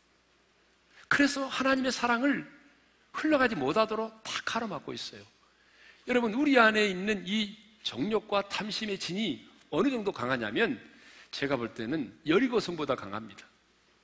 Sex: male